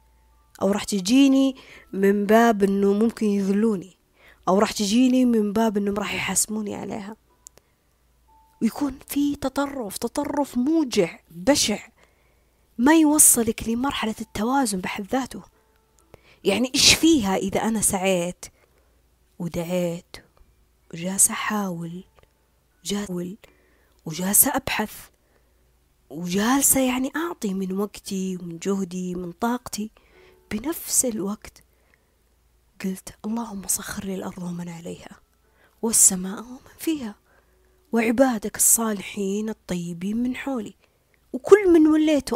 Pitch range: 190-265 Hz